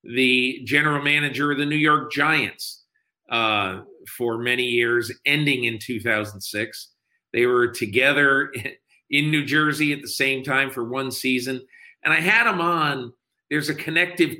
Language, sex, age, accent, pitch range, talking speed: English, male, 50-69, American, 115-145 Hz, 150 wpm